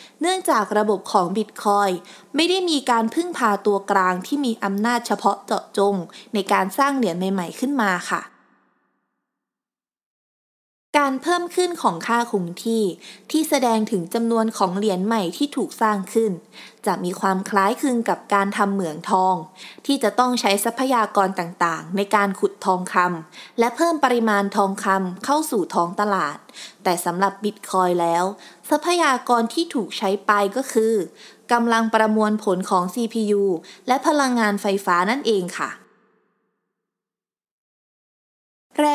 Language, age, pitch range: Thai, 20-39, 190-245 Hz